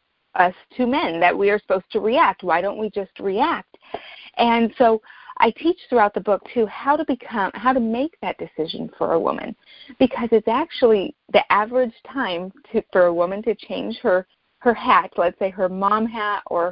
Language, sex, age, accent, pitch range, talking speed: English, female, 30-49, American, 195-255 Hz, 190 wpm